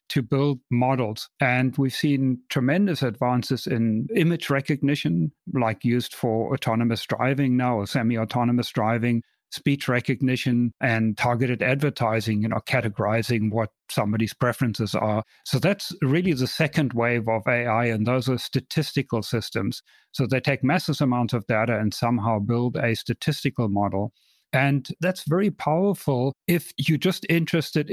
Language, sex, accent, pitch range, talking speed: English, male, German, 120-145 Hz, 140 wpm